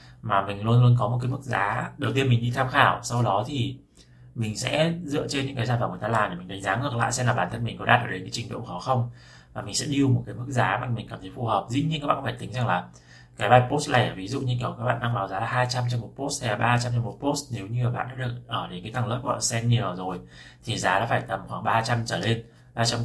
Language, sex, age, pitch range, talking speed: Vietnamese, male, 20-39, 105-130 Hz, 310 wpm